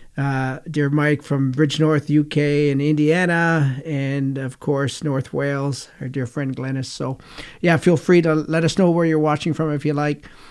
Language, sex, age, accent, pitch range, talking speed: English, male, 40-59, American, 140-160 Hz, 190 wpm